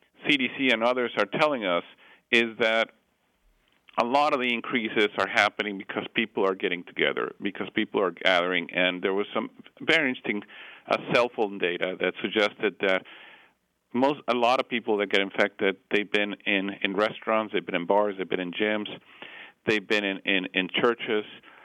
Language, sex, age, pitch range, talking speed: English, male, 50-69, 105-120 Hz, 175 wpm